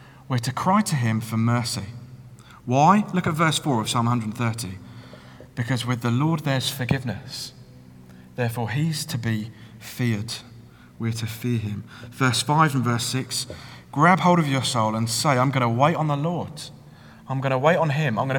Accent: British